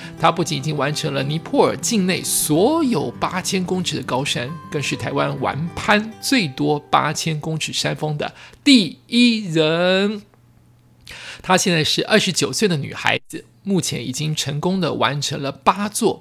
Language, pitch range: Chinese, 145-185 Hz